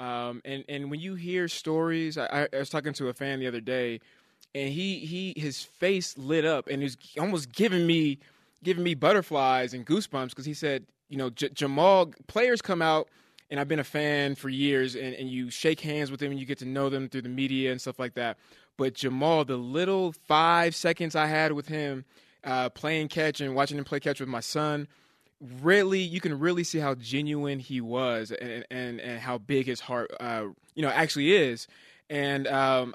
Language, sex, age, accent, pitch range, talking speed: English, male, 20-39, American, 130-160 Hz, 210 wpm